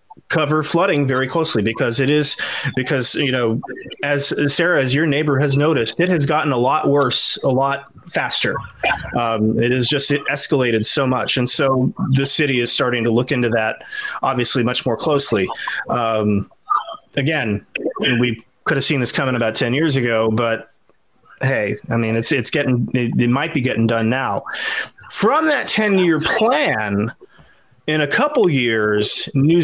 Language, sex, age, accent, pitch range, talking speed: English, male, 30-49, American, 120-145 Hz, 170 wpm